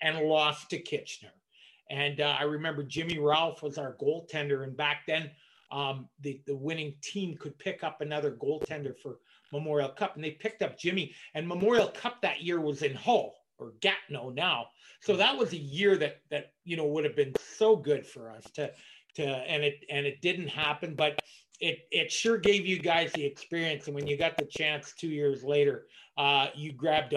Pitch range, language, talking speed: 145-185 Hz, English, 200 wpm